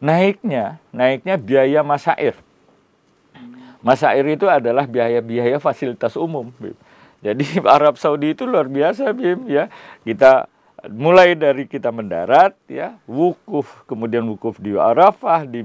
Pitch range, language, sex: 130-190 Hz, Indonesian, male